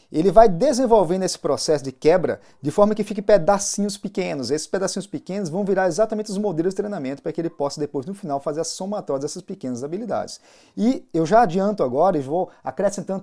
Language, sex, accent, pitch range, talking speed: Portuguese, male, Brazilian, 145-200 Hz, 200 wpm